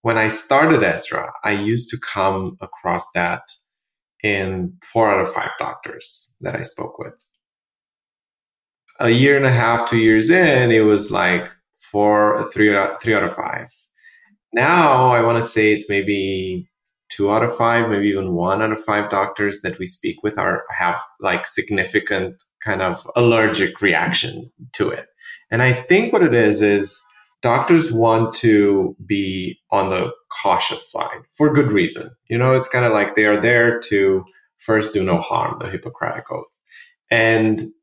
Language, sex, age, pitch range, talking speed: English, male, 20-39, 100-125 Hz, 165 wpm